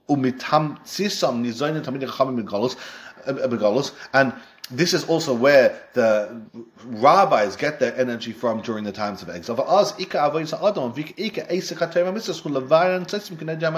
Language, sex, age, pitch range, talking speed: English, male, 30-49, 130-170 Hz, 70 wpm